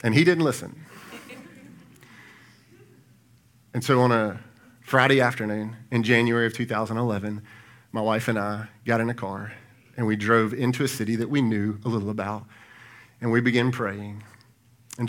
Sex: male